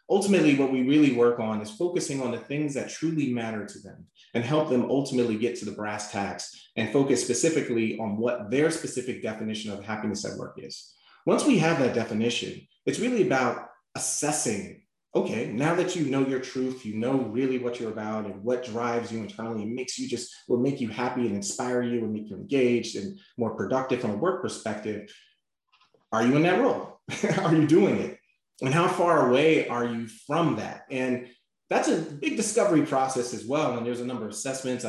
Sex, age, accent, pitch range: male, 30-49, American, 110-135 Hz